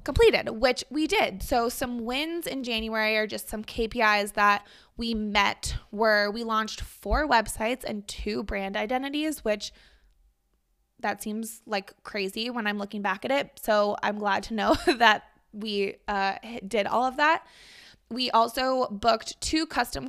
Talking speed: 160 wpm